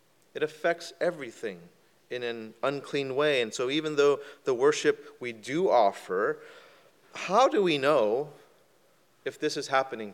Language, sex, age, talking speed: English, male, 30-49, 140 wpm